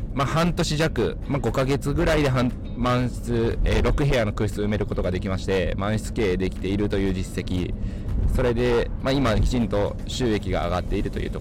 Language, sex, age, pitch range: Japanese, male, 20-39, 95-120 Hz